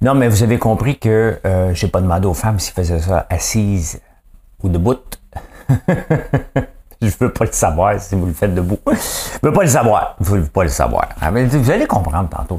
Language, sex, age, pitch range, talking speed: English, male, 60-79, 80-105 Hz, 205 wpm